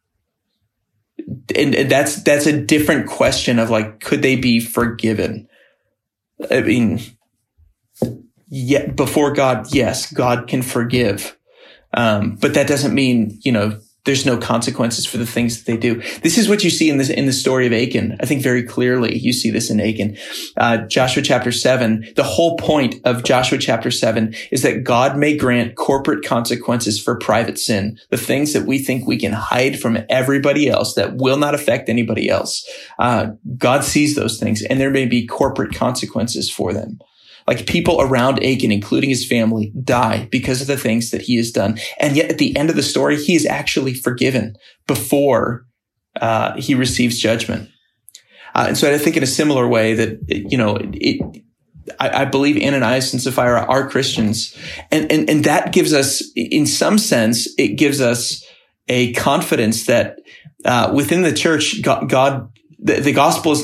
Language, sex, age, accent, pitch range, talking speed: English, male, 30-49, American, 115-140 Hz, 175 wpm